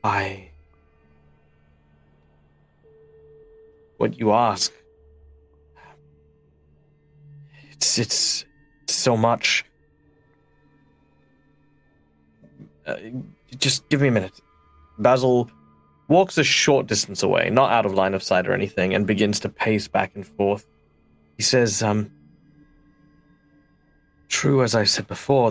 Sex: male